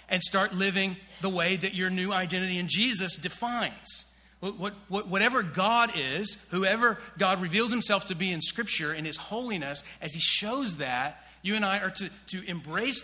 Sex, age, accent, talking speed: male, 40-59, American, 185 wpm